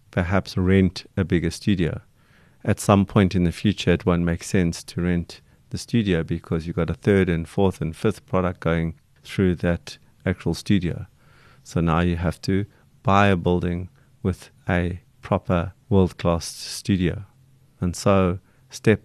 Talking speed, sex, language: 160 wpm, male, English